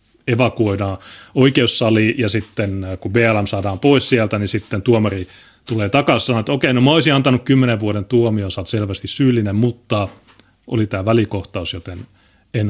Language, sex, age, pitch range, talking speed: Finnish, male, 30-49, 100-120 Hz, 160 wpm